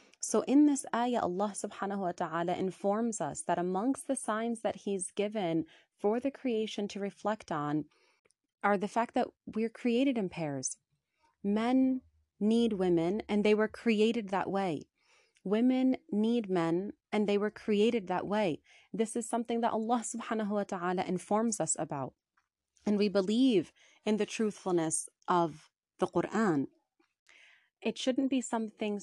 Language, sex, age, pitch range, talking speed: English, female, 30-49, 180-230 Hz, 150 wpm